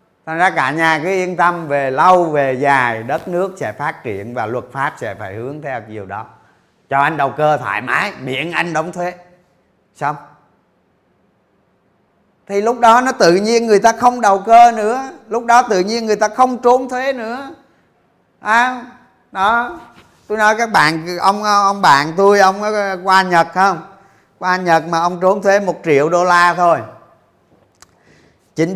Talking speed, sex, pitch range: 175 wpm, male, 130-200 Hz